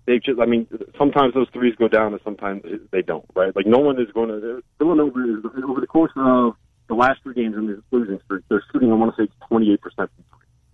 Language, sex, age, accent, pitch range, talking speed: English, male, 40-59, American, 105-130 Hz, 235 wpm